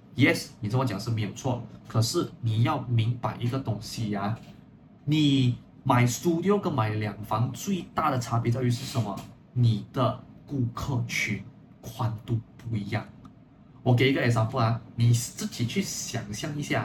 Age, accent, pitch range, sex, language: 20-39, native, 115-140 Hz, male, Chinese